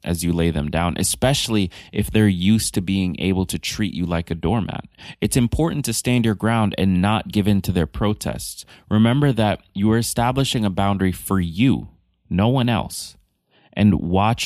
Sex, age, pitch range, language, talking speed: male, 20-39, 90-110 Hz, English, 185 wpm